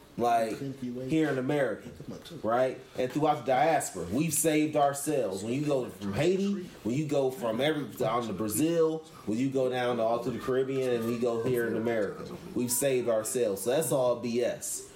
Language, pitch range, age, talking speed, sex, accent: English, 125-155 Hz, 30-49, 190 wpm, male, American